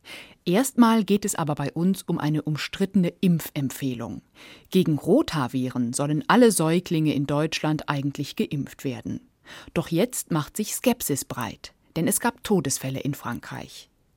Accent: German